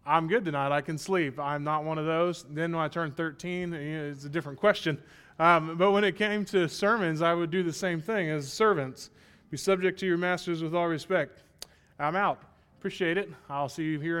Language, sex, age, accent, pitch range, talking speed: English, male, 20-39, American, 155-185 Hz, 215 wpm